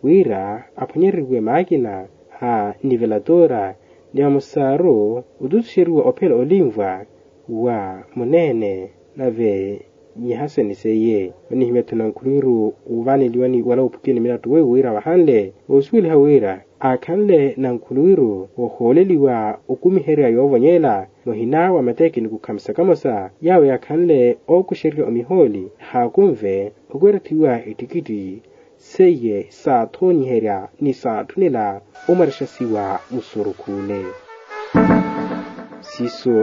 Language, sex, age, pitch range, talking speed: Portuguese, male, 30-49, 115-165 Hz, 100 wpm